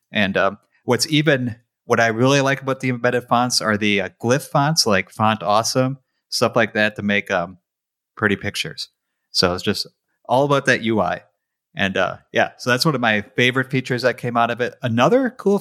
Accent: American